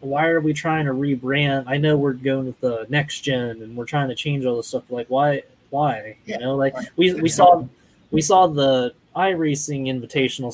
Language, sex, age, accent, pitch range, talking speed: English, male, 20-39, American, 130-165 Hz, 205 wpm